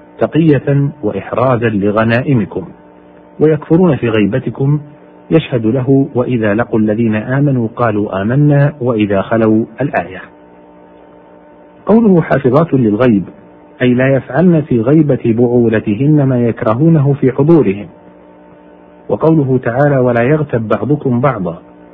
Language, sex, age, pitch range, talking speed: Arabic, male, 50-69, 100-140 Hz, 100 wpm